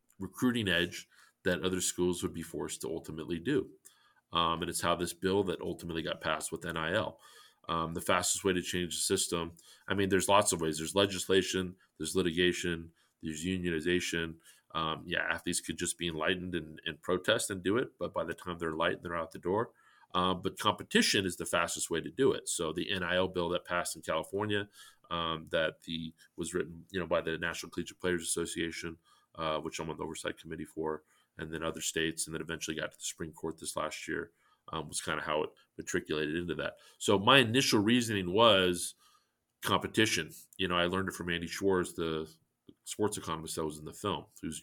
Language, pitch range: English, 85-100 Hz